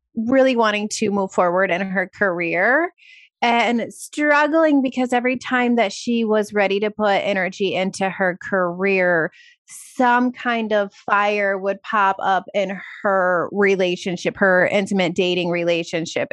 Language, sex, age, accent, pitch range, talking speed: English, female, 30-49, American, 180-210 Hz, 135 wpm